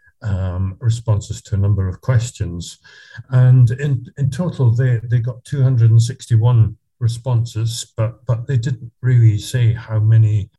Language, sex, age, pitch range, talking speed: English, male, 60-79, 110-125 Hz, 135 wpm